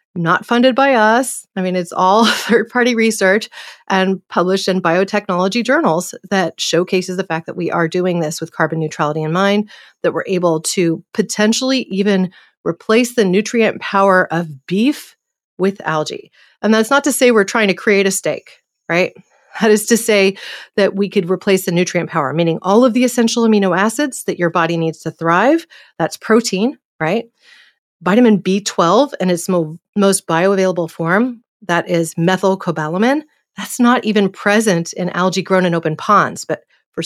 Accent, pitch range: American, 170-215 Hz